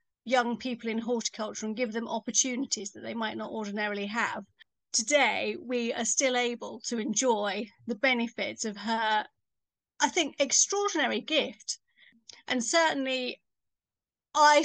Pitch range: 220-265 Hz